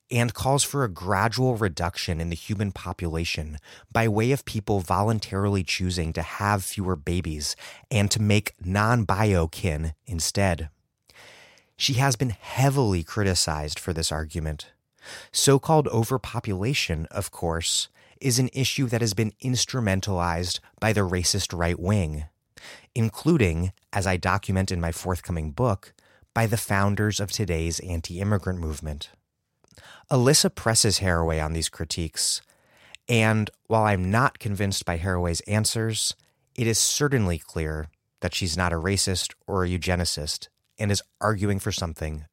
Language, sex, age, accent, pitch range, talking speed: English, male, 30-49, American, 85-115 Hz, 135 wpm